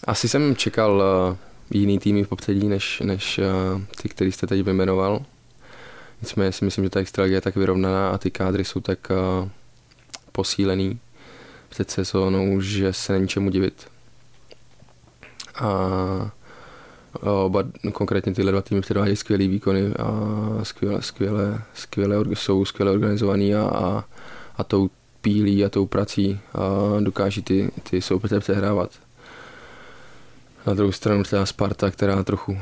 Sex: male